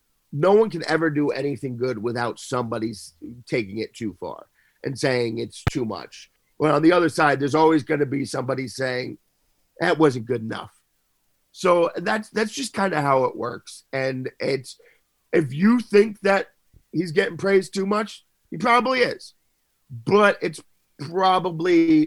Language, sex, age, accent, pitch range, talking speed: English, male, 50-69, American, 120-165 Hz, 165 wpm